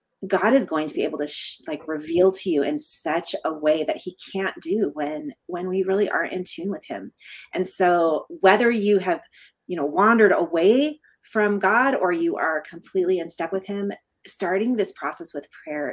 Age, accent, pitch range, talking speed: 30-49, American, 155-210 Hz, 200 wpm